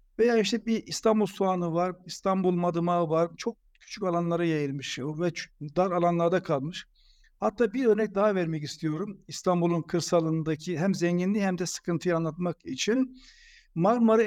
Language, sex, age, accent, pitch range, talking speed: Turkish, male, 60-79, native, 170-210 Hz, 140 wpm